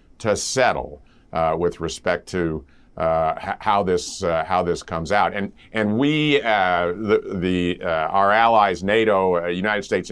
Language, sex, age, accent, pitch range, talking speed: English, male, 50-69, American, 90-110 Hz, 165 wpm